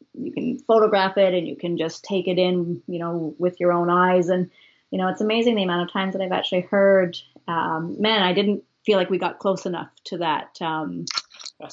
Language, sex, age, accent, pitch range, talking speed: English, female, 30-49, American, 170-190 Hz, 220 wpm